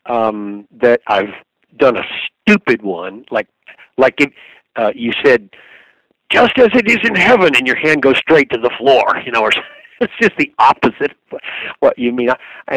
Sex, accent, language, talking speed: male, American, English, 195 wpm